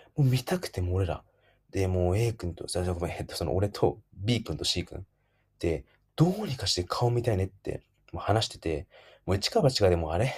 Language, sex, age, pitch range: Japanese, male, 20-39, 90-115 Hz